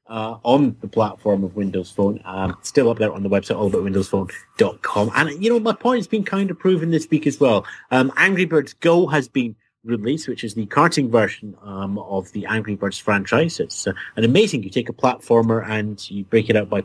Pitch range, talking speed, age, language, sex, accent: 105-145 Hz, 225 wpm, 30-49, English, male, British